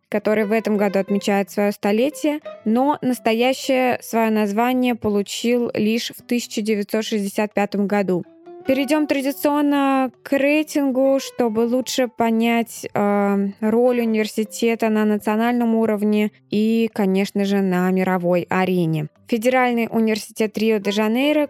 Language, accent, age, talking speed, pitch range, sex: Russian, native, 20-39, 105 wpm, 195-240 Hz, female